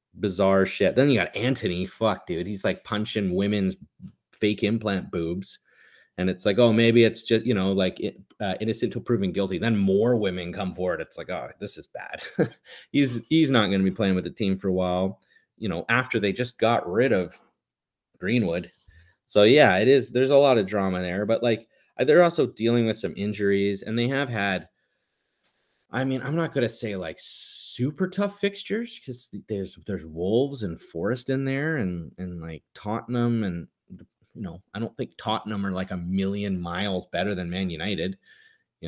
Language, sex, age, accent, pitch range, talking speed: English, male, 30-49, American, 90-120 Hz, 195 wpm